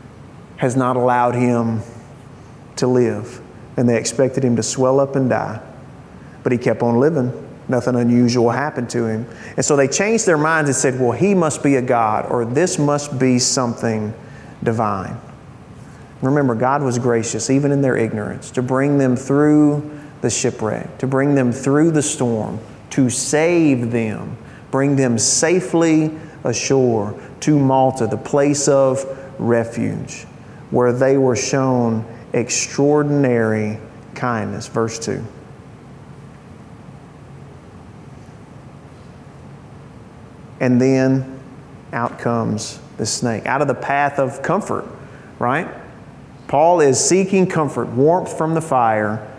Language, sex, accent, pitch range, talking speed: English, male, American, 120-145 Hz, 130 wpm